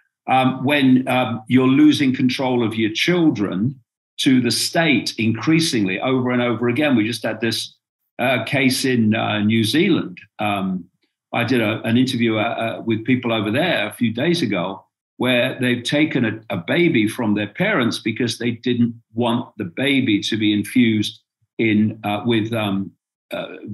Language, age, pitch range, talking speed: Dutch, 50-69, 110-150 Hz, 165 wpm